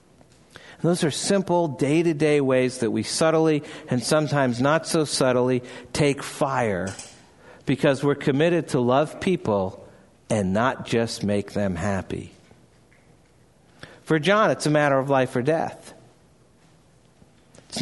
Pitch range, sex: 155-200 Hz, male